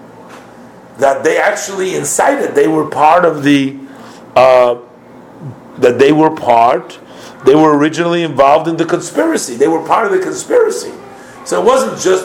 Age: 50-69